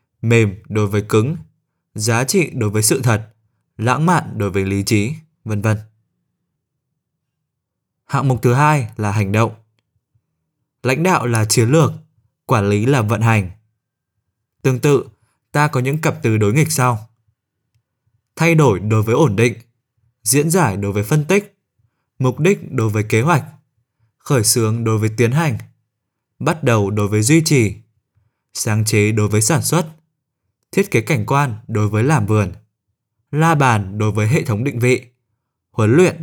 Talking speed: 165 wpm